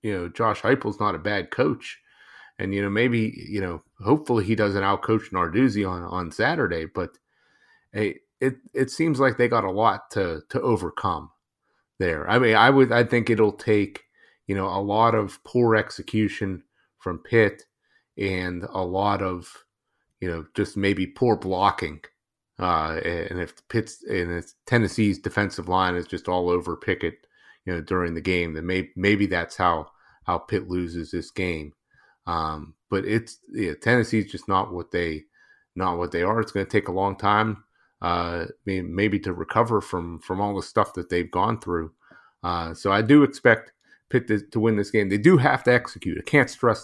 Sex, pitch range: male, 90-110 Hz